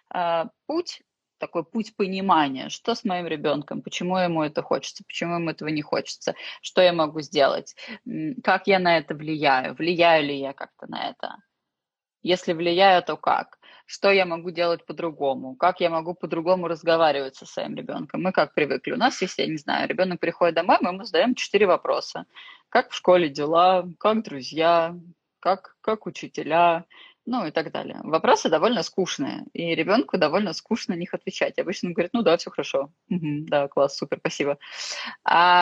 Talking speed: 170 wpm